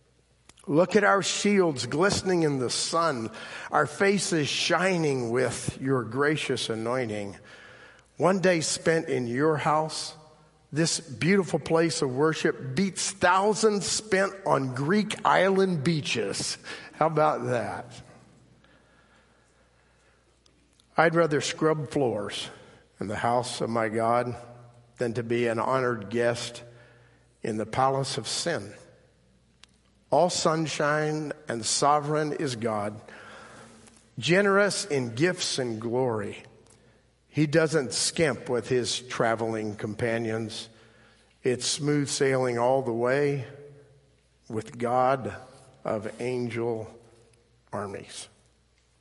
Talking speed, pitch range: 105 wpm, 115-160 Hz